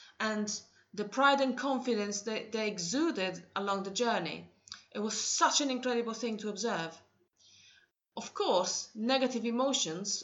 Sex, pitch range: female, 200-250 Hz